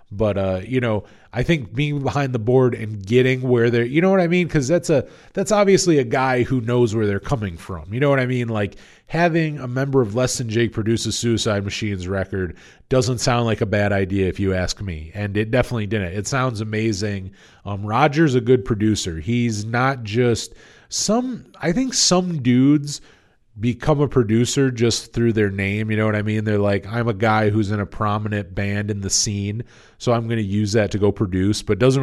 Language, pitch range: English, 105-125 Hz